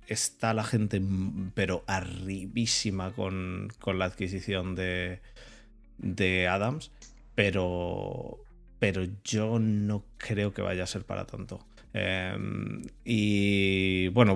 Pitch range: 95-110 Hz